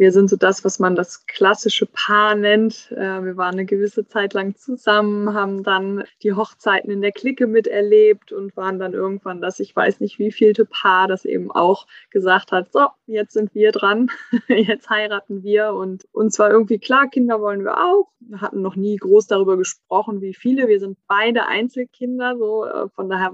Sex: female